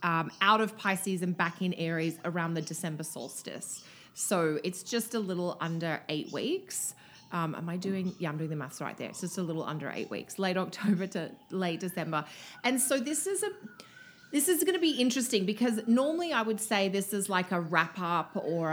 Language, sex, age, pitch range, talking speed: English, female, 30-49, 165-215 Hz, 210 wpm